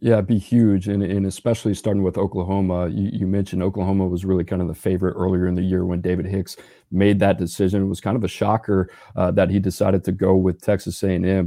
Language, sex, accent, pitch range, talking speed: English, male, American, 90-100 Hz, 235 wpm